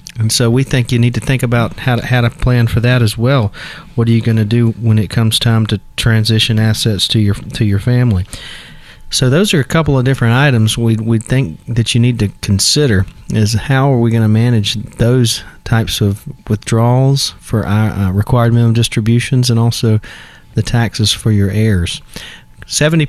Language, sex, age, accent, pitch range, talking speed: English, male, 40-59, American, 110-125 Hz, 195 wpm